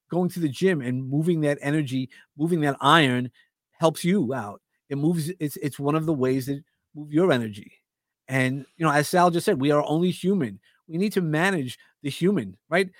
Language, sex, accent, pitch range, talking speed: English, male, American, 125-155 Hz, 205 wpm